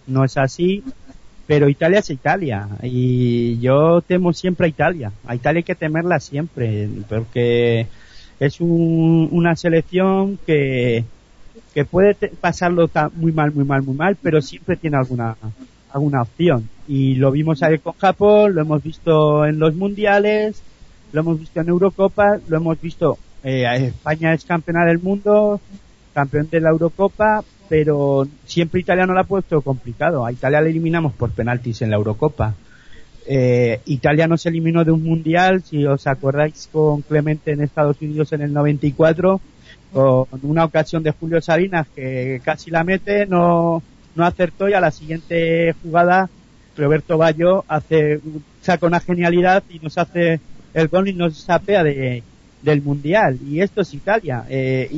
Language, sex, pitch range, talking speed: English, male, 135-175 Hz, 160 wpm